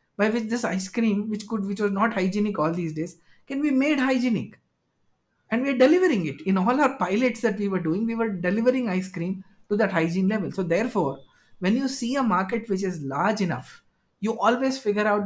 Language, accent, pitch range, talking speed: English, Indian, 175-225 Hz, 215 wpm